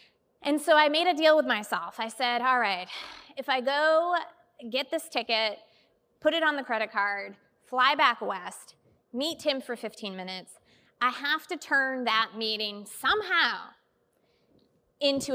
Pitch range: 225-295 Hz